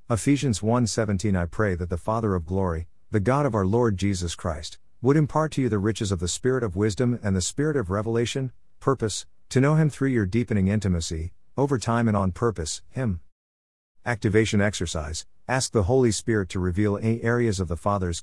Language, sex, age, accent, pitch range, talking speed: English, male, 50-69, American, 85-120 Hz, 200 wpm